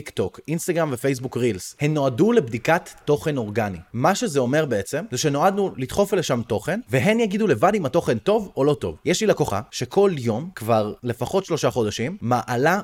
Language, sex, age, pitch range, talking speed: Hebrew, male, 20-39, 110-165 Hz, 180 wpm